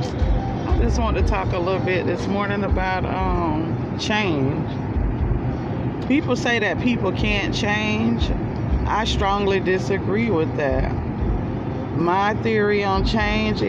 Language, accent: English, American